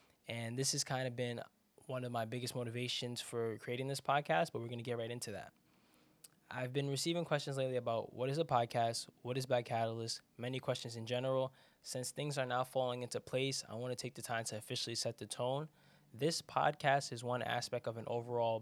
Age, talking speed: 10-29, 215 wpm